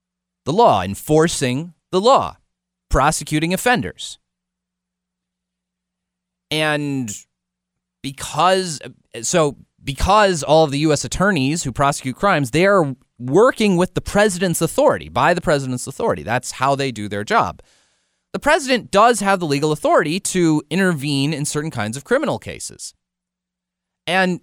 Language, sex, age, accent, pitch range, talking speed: English, male, 30-49, American, 125-185 Hz, 130 wpm